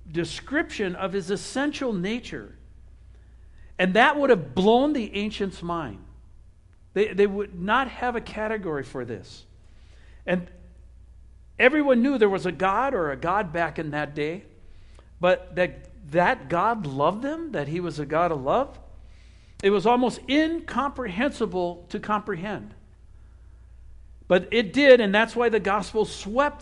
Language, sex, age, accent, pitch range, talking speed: English, male, 60-79, American, 165-235 Hz, 145 wpm